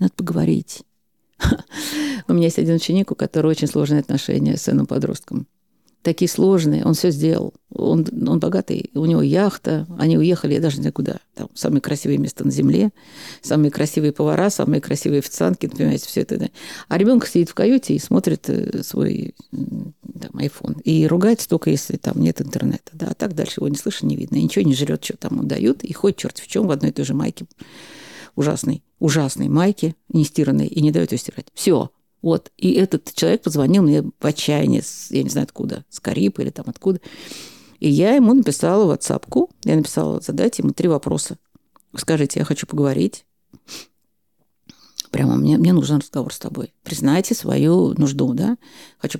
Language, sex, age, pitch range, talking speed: Russian, female, 50-69, 150-200 Hz, 180 wpm